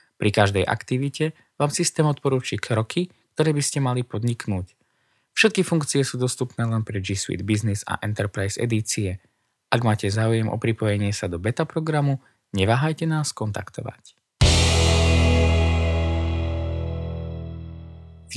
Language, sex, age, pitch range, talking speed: Slovak, male, 20-39, 95-135 Hz, 120 wpm